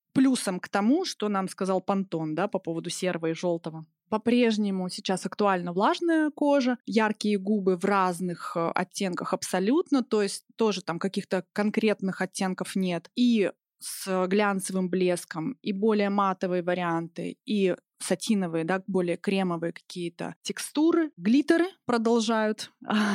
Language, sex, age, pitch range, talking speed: Russian, female, 20-39, 185-235 Hz, 125 wpm